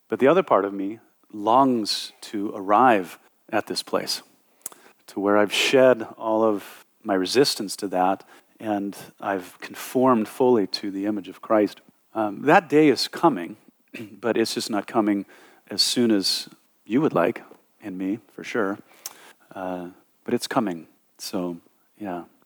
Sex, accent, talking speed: male, American, 150 wpm